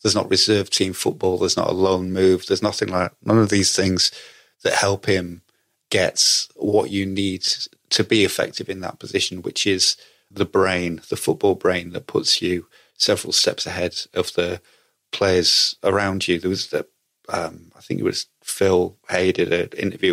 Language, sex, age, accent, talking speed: English, male, 30-49, British, 180 wpm